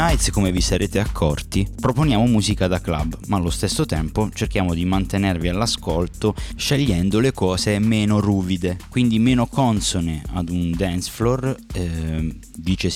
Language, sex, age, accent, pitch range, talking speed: English, male, 20-39, Italian, 85-110 Hz, 145 wpm